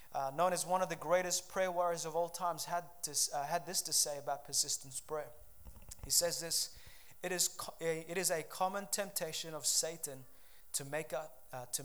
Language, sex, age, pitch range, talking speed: English, male, 30-49, 140-185 Hz, 175 wpm